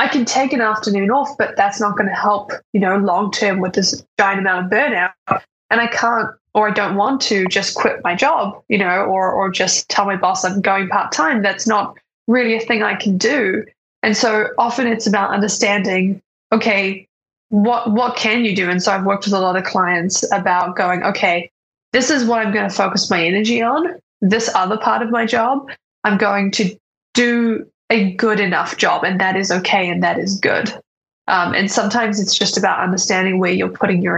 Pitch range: 185-220 Hz